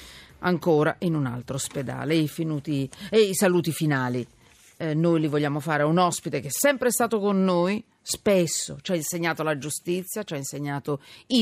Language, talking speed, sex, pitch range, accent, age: Italian, 175 wpm, female, 150-200 Hz, native, 40-59